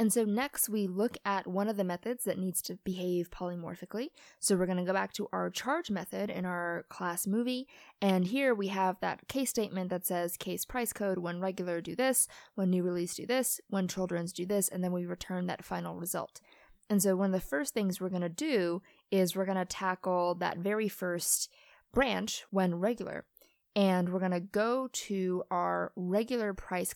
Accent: American